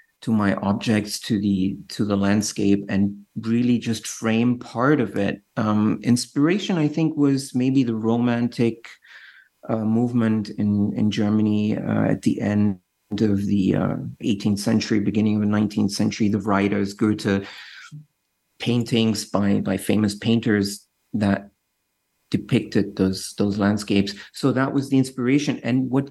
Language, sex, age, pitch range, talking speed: English, male, 50-69, 105-125 Hz, 145 wpm